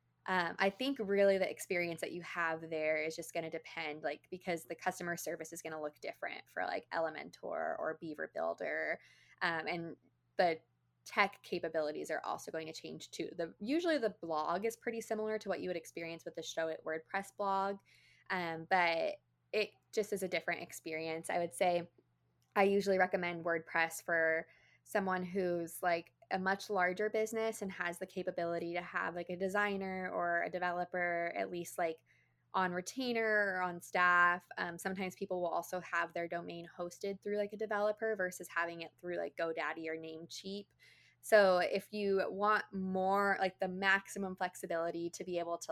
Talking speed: 180 wpm